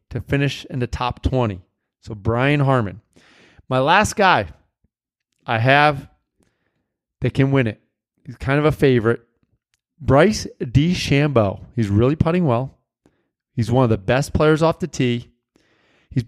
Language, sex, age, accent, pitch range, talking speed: English, male, 30-49, American, 120-150 Hz, 150 wpm